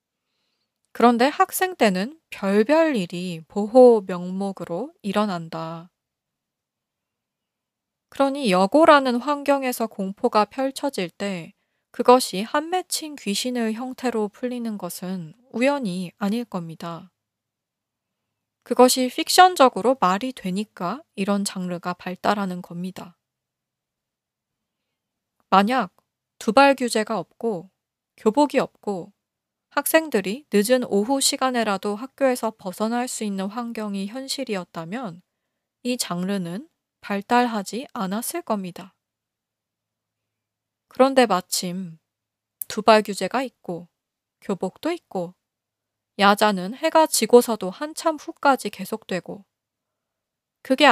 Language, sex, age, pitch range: Korean, female, 20-39, 180-260 Hz